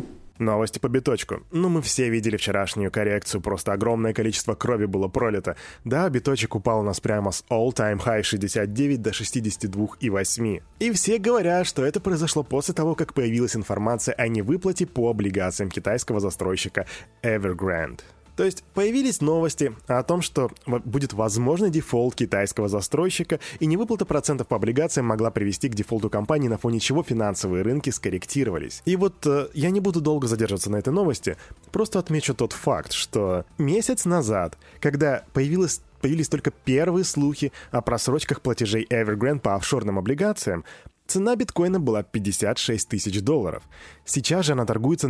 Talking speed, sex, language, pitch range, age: 150 wpm, male, Russian, 110-150 Hz, 20-39